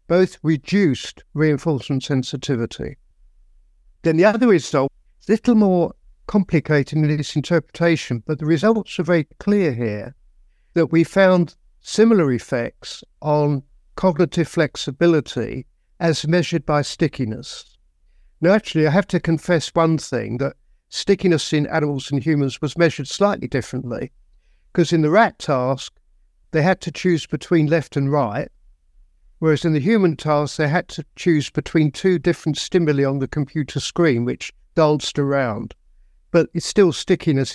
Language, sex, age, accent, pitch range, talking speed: English, male, 50-69, British, 135-175 Hz, 140 wpm